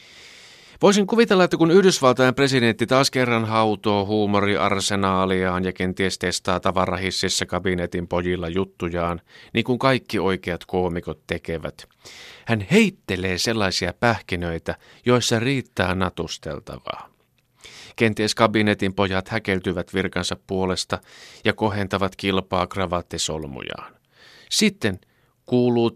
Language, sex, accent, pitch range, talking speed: Finnish, male, native, 90-115 Hz, 95 wpm